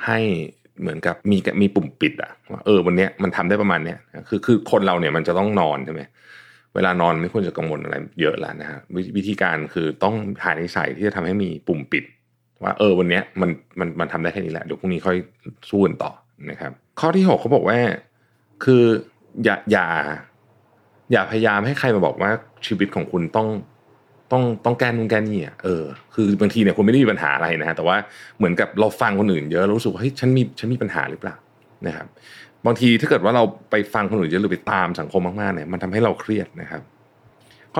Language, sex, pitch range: Thai, male, 90-115 Hz